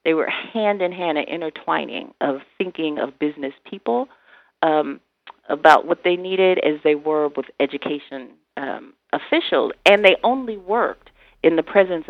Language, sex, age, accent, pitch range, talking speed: English, female, 40-59, American, 150-195 Hz, 155 wpm